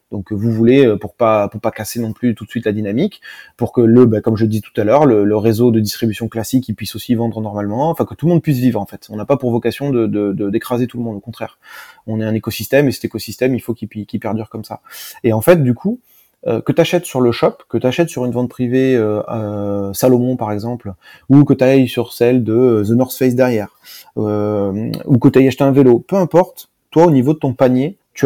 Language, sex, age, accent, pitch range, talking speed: French, male, 20-39, French, 110-135 Hz, 265 wpm